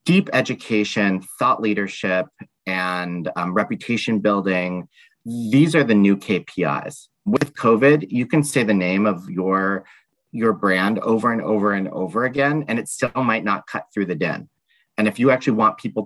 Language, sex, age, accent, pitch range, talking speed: English, male, 40-59, American, 95-115 Hz, 170 wpm